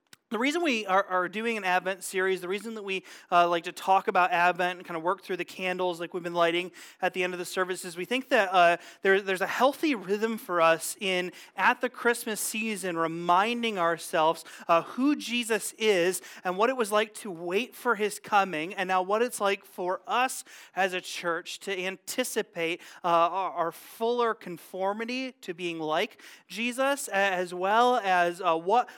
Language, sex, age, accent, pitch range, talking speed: English, male, 30-49, American, 175-215 Hz, 180 wpm